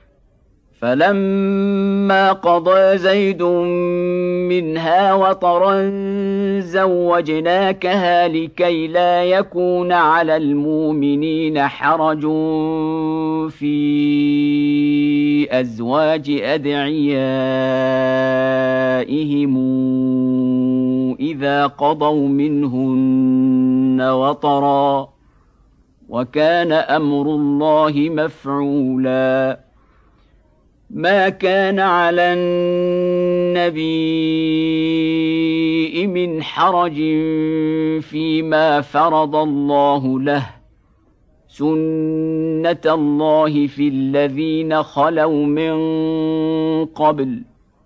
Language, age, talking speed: Indonesian, 50-69, 50 wpm